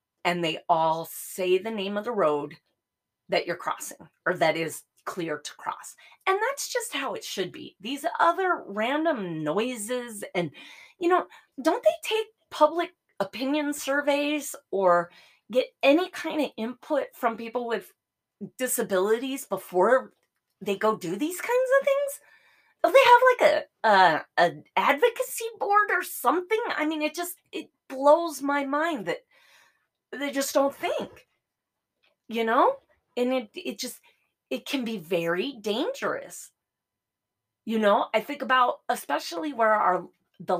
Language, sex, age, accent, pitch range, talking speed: English, female, 30-49, American, 190-305 Hz, 150 wpm